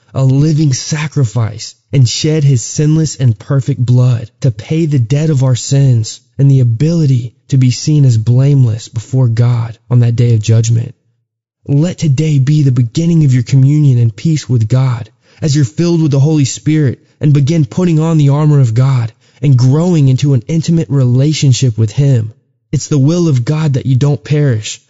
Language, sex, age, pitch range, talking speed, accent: English, male, 20-39, 120-150 Hz, 185 wpm, American